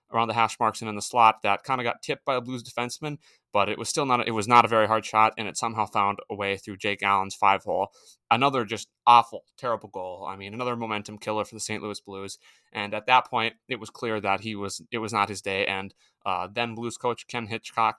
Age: 20-39